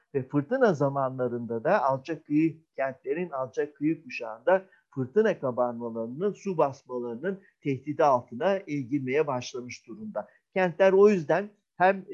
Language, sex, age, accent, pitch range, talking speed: Turkish, male, 50-69, native, 135-165 Hz, 120 wpm